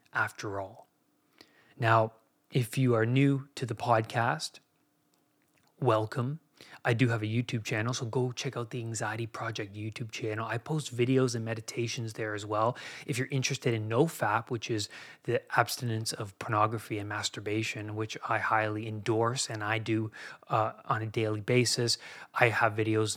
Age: 20-39